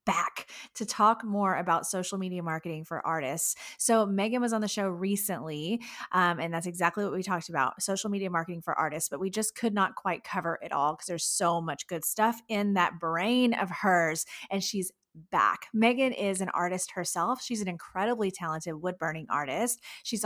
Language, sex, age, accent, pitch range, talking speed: English, female, 30-49, American, 170-215 Hz, 195 wpm